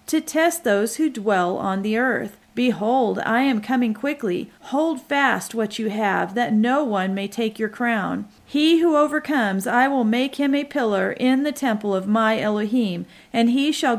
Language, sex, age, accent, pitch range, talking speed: English, female, 40-59, American, 210-270 Hz, 185 wpm